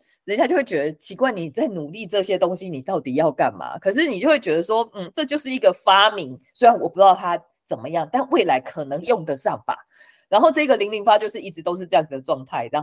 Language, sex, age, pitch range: Chinese, female, 20-39, 160-255 Hz